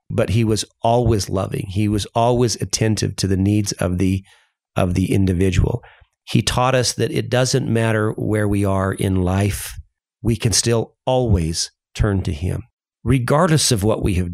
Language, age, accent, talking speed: English, 40-59, American, 170 wpm